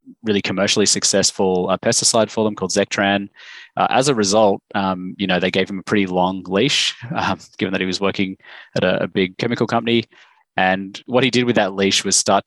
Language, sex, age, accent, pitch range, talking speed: English, male, 20-39, Australian, 90-105 Hz, 210 wpm